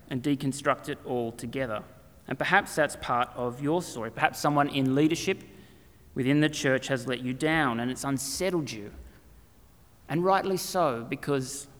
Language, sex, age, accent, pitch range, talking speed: English, male, 30-49, Australian, 125-160 Hz, 160 wpm